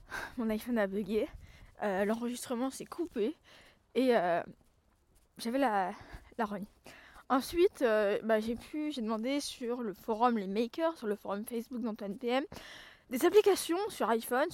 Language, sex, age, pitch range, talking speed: French, female, 20-39, 220-265 Hz, 150 wpm